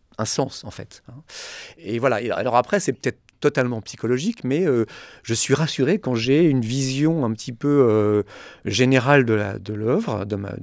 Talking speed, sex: 180 wpm, male